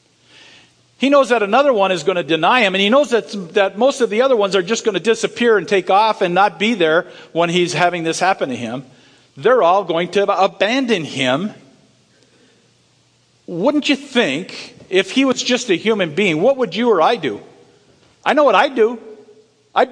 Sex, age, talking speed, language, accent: male, 50-69, 200 wpm, English, American